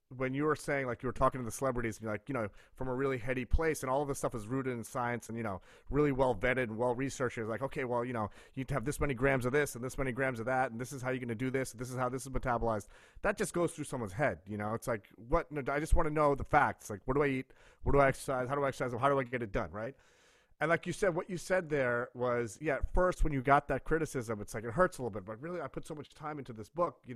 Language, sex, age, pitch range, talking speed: English, male, 30-49, 120-145 Hz, 320 wpm